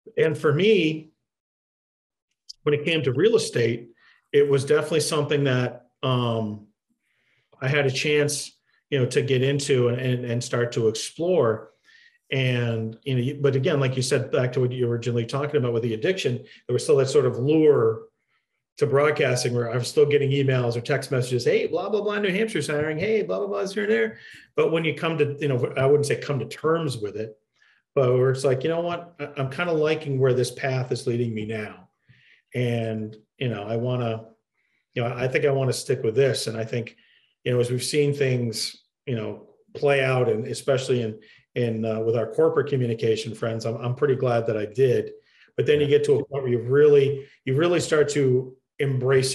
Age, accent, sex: 40-59, American, male